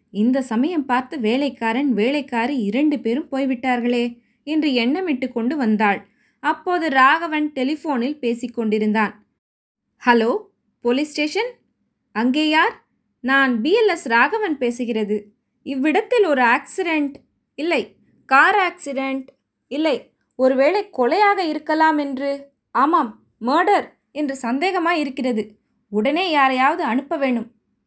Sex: female